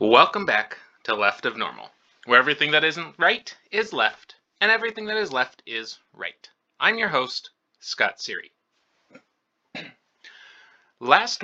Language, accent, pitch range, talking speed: English, American, 130-205 Hz, 135 wpm